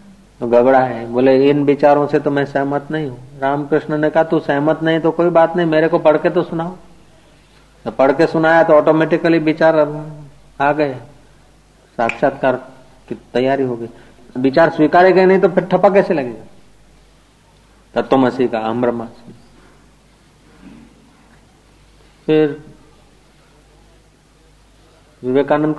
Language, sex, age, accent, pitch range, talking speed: Hindi, male, 50-69, native, 120-155 Hz, 130 wpm